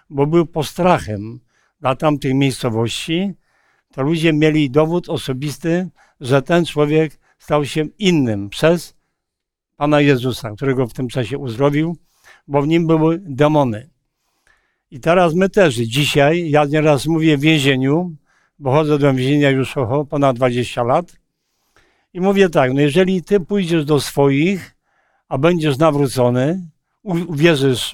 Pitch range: 140-175 Hz